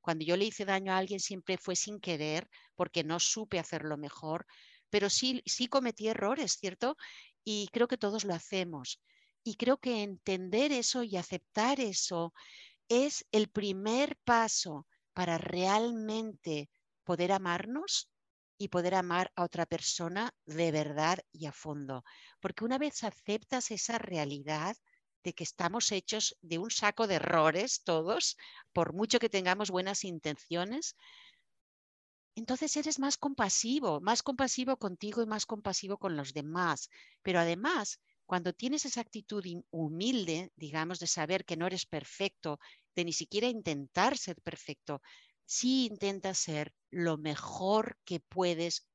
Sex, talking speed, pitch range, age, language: female, 145 wpm, 170-230 Hz, 50-69, Spanish